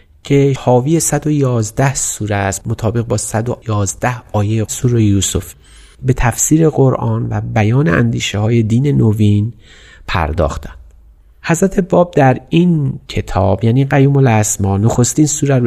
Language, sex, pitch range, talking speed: Persian, male, 105-135 Hz, 125 wpm